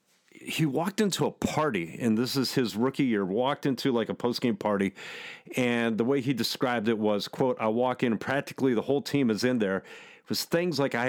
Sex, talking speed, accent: male, 220 wpm, American